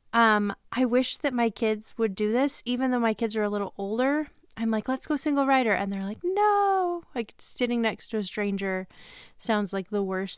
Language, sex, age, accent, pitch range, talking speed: English, female, 30-49, American, 205-255 Hz, 215 wpm